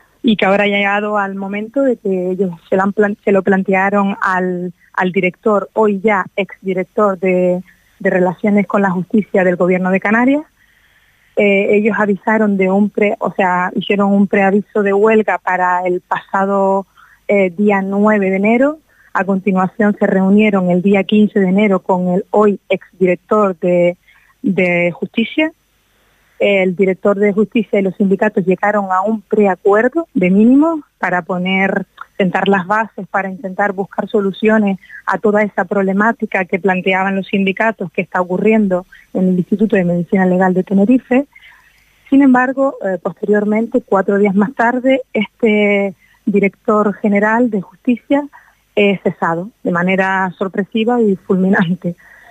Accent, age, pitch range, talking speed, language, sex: Spanish, 30-49, 190-215 Hz, 145 wpm, Spanish, female